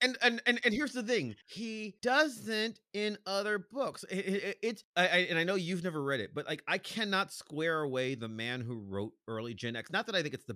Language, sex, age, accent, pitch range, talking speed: English, male, 30-49, American, 120-175 Hz, 245 wpm